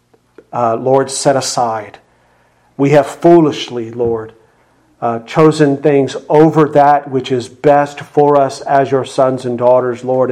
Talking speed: 140 wpm